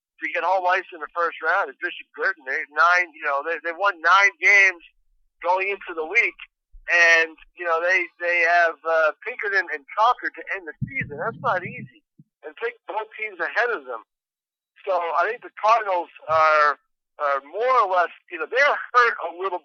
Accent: American